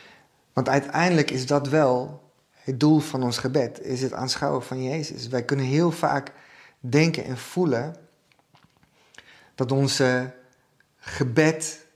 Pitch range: 125-145 Hz